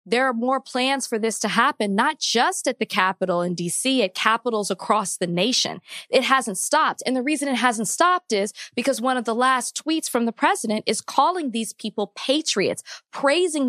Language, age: English, 20-39